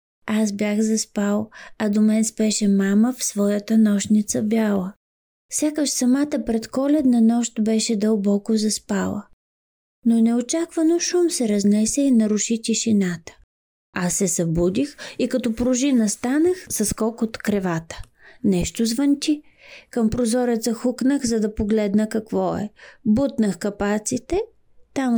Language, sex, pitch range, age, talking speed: Bulgarian, female, 210-275 Hz, 20-39, 125 wpm